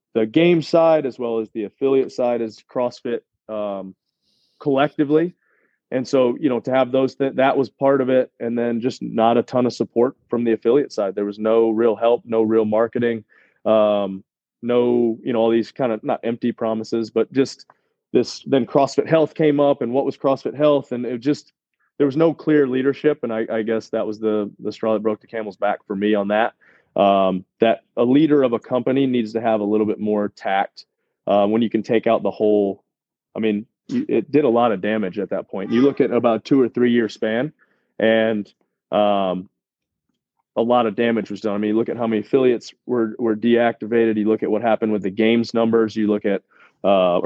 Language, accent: English, American